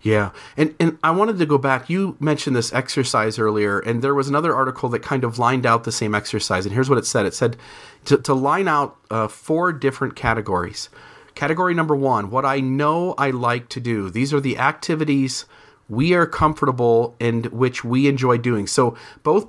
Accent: American